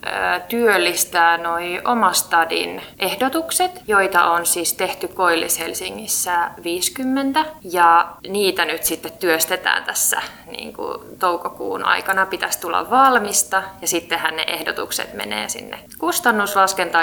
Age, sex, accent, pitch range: 20-39, female, native, 175-235 Hz